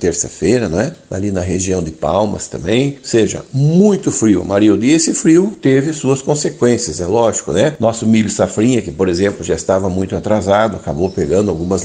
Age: 60-79